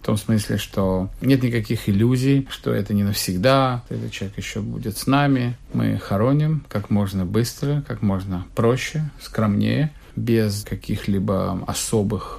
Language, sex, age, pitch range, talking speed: Russian, male, 50-69, 100-130 Hz, 140 wpm